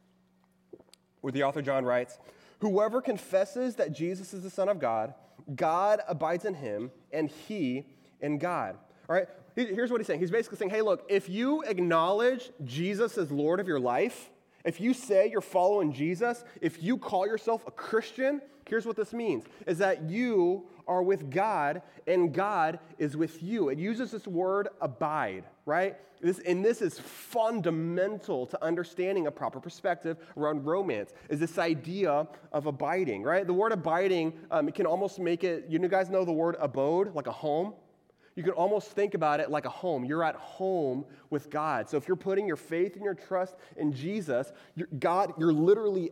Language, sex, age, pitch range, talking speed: English, male, 30-49, 160-200 Hz, 180 wpm